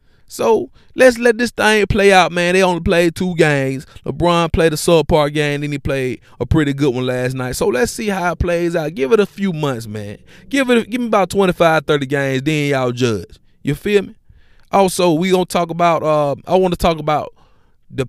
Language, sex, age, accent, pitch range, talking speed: English, male, 20-39, American, 130-175 Hz, 215 wpm